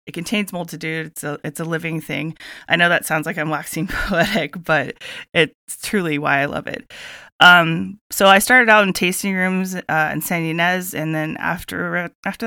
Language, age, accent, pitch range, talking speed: English, 30-49, American, 155-195 Hz, 200 wpm